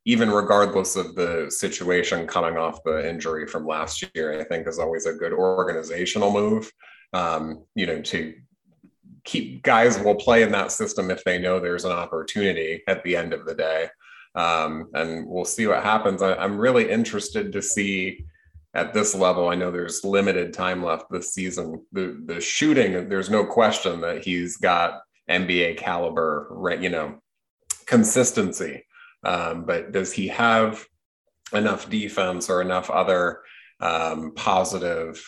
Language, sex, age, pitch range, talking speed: English, male, 30-49, 80-105 Hz, 155 wpm